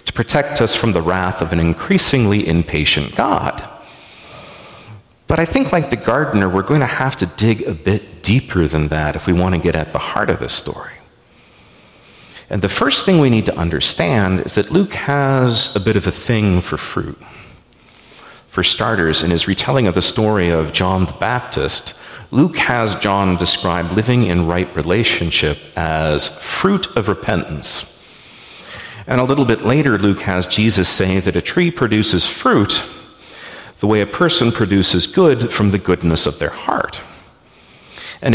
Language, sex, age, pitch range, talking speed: English, male, 40-59, 90-125 Hz, 170 wpm